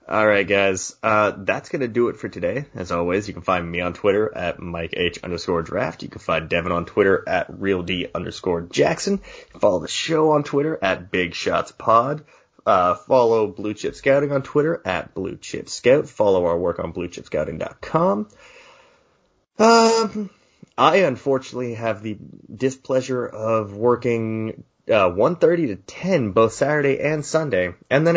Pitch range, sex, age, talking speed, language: 95-150 Hz, male, 20-39, 160 wpm, English